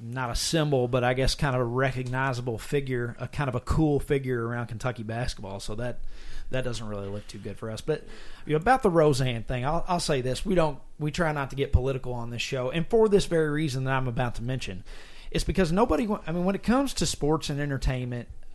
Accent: American